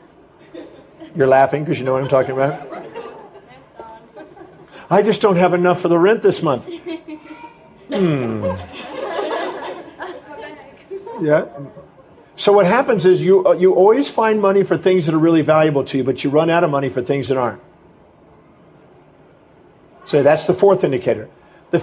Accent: American